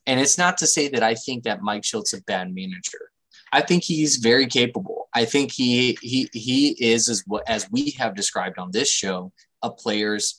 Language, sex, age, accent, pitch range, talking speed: English, male, 20-39, American, 110-150 Hz, 210 wpm